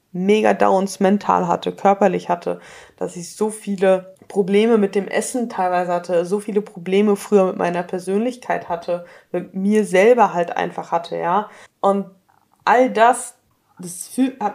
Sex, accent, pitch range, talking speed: female, German, 175-205 Hz, 150 wpm